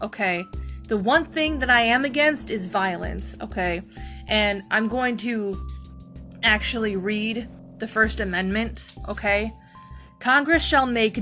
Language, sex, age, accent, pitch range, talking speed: English, female, 20-39, American, 195-260 Hz, 130 wpm